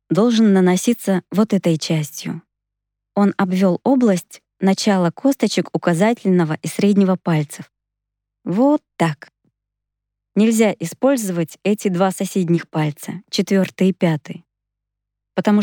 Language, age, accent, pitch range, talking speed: Russian, 20-39, native, 160-205 Hz, 100 wpm